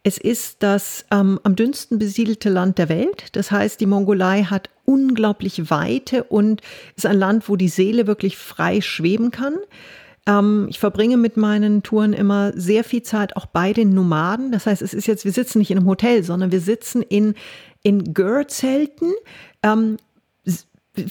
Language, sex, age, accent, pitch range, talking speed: German, female, 40-59, German, 205-245 Hz, 170 wpm